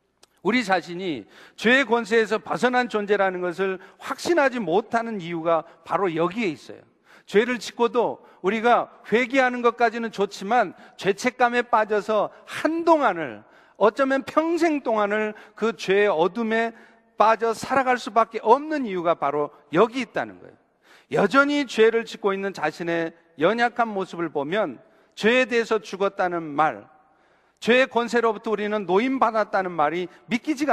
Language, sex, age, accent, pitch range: Korean, male, 40-59, native, 170-230 Hz